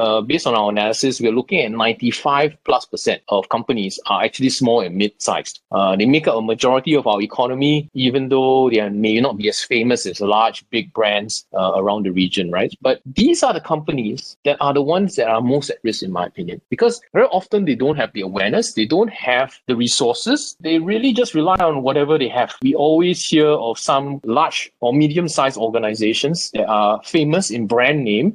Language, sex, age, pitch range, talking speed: English, male, 20-39, 110-160 Hz, 205 wpm